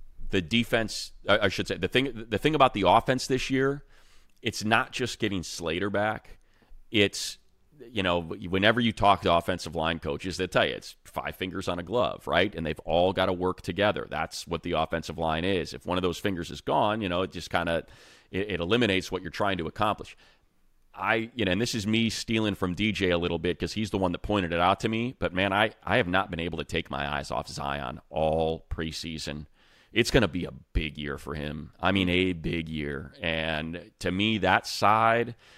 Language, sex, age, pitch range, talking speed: English, male, 30-49, 85-105 Hz, 220 wpm